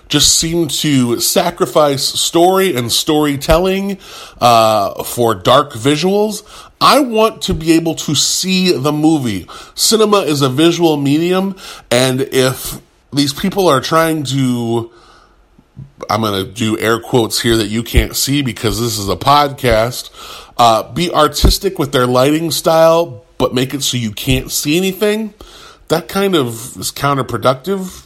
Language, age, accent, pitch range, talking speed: English, 30-49, American, 125-185 Hz, 145 wpm